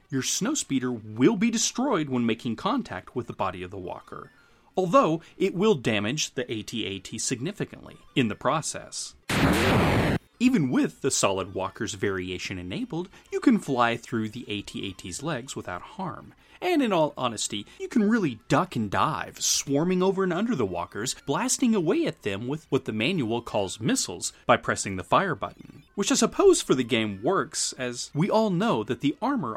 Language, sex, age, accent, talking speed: English, male, 30-49, American, 175 wpm